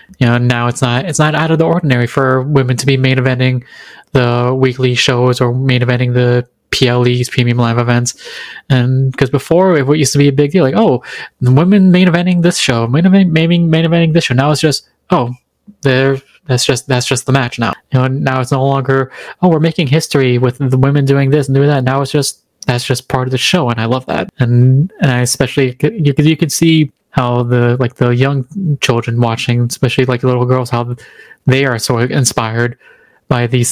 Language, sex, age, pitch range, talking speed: English, male, 20-39, 125-145 Hz, 215 wpm